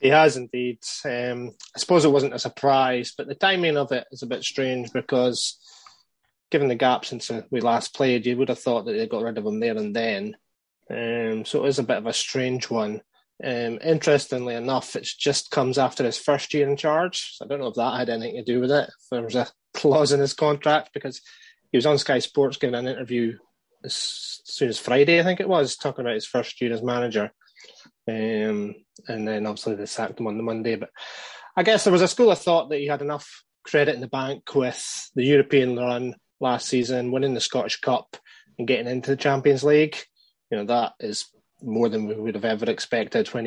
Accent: British